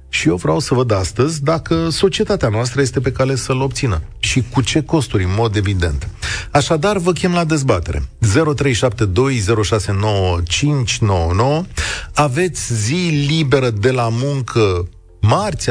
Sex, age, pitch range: male, 40-59, 95-135 Hz